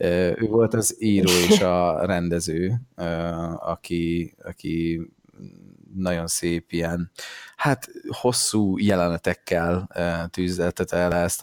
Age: 20-39